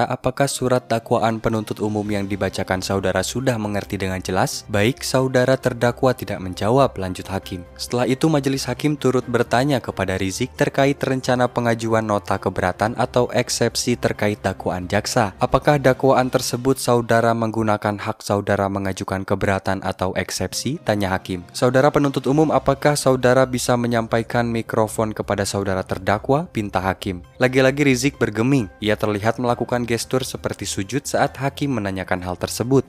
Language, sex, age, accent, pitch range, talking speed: Indonesian, male, 20-39, native, 100-130 Hz, 140 wpm